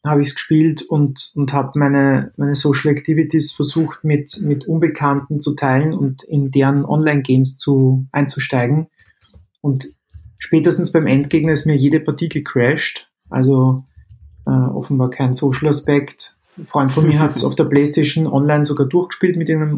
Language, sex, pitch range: German, male, 140-160 Hz